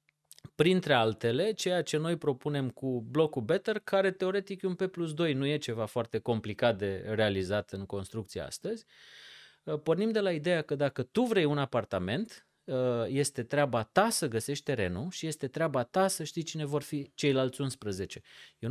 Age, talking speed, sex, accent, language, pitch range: 30-49, 175 wpm, male, native, Romanian, 120-165 Hz